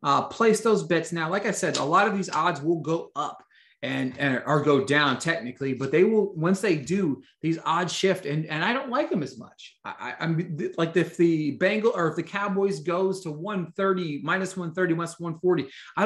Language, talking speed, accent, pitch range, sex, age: English, 215 wpm, American, 145-195 Hz, male, 30-49